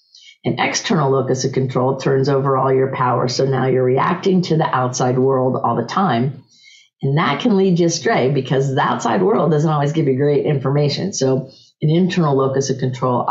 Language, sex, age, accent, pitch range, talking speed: English, female, 50-69, American, 130-160 Hz, 195 wpm